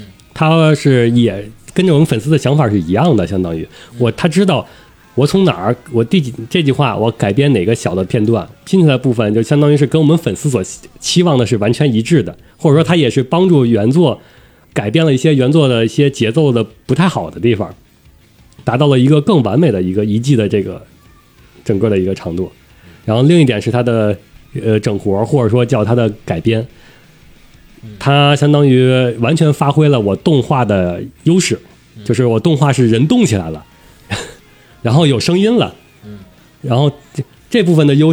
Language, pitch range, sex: Chinese, 110-145 Hz, male